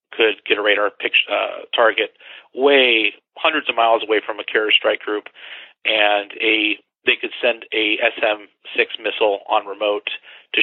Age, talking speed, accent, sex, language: 40-59, 160 wpm, American, male, English